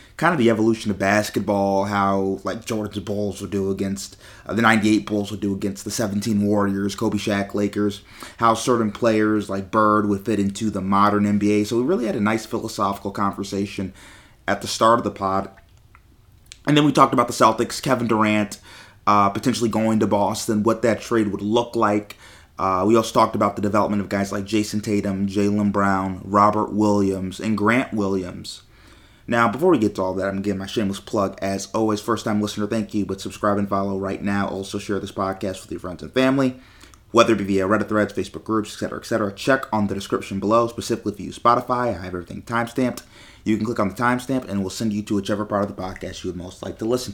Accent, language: American, English